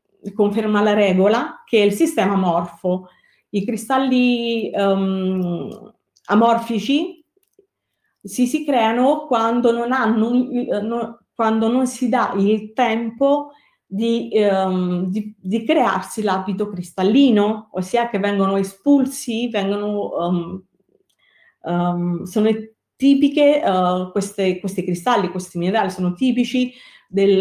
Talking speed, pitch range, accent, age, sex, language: 110 wpm, 185-230 Hz, native, 30-49, female, Italian